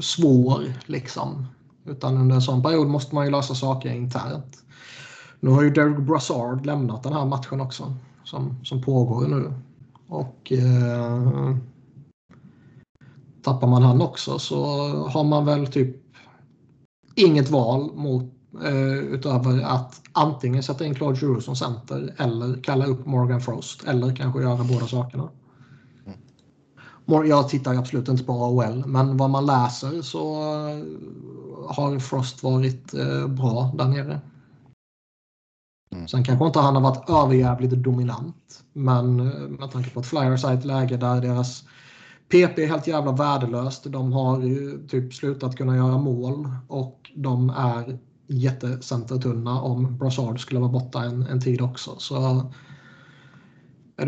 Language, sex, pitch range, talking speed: Swedish, male, 125-140 Hz, 140 wpm